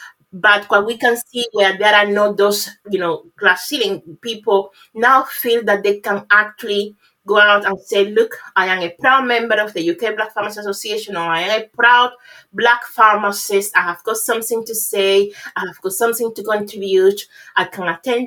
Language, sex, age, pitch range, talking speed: English, female, 30-49, 190-230 Hz, 195 wpm